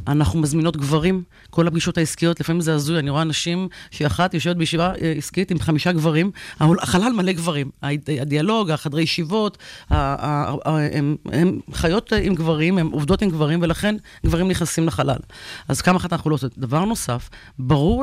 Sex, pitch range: female, 150-180 Hz